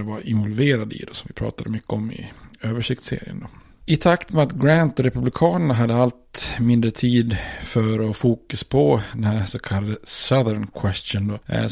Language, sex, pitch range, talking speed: Swedish, male, 110-120 Hz, 180 wpm